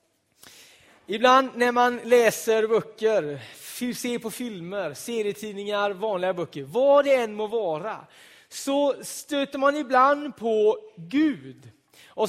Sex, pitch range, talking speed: male, 175-255 Hz, 110 wpm